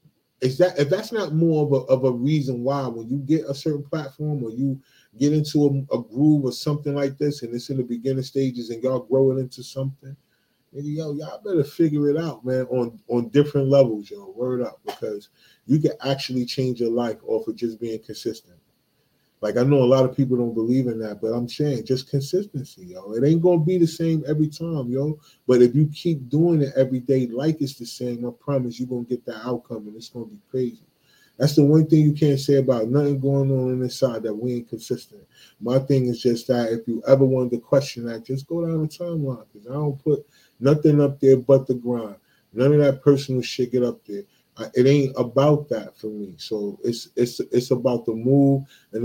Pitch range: 120-145 Hz